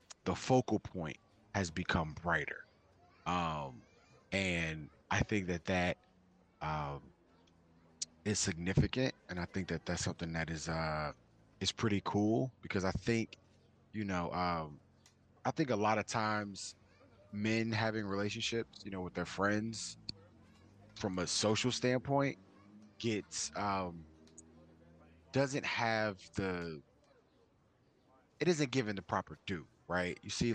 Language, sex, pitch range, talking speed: English, male, 85-110 Hz, 130 wpm